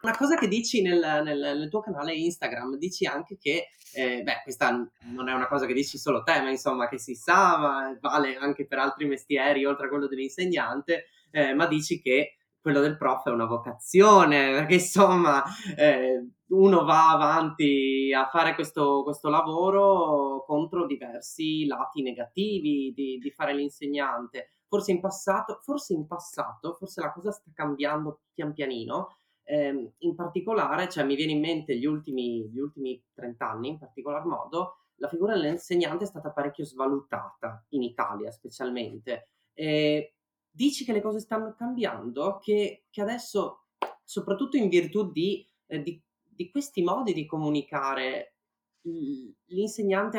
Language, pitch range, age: Italian, 140-190 Hz, 20-39